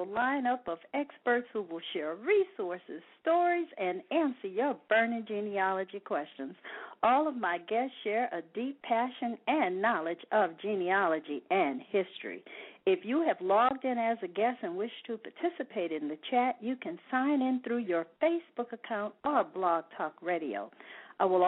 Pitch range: 195-310 Hz